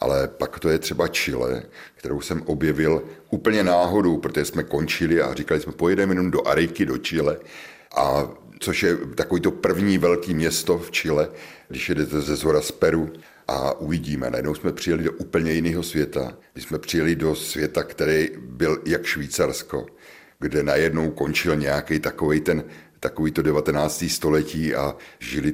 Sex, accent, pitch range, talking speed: male, native, 70-85 Hz, 160 wpm